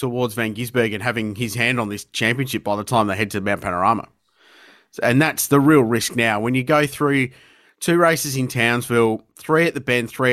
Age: 30-49